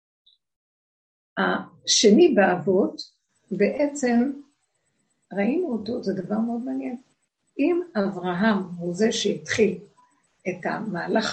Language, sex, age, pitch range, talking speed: Hebrew, female, 60-79, 200-255 Hz, 85 wpm